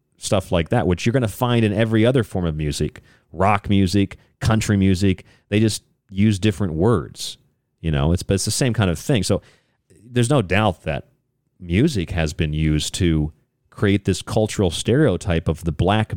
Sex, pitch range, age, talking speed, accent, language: male, 95-135 Hz, 40-59, 180 wpm, American, English